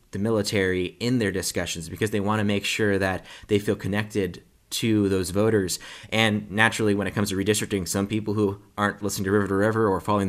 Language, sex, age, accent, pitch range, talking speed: English, male, 20-39, American, 95-110 Hz, 210 wpm